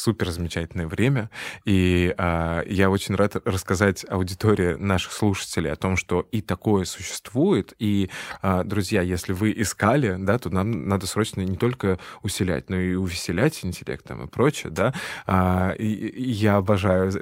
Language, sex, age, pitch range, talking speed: Russian, male, 20-39, 90-105 Hz, 135 wpm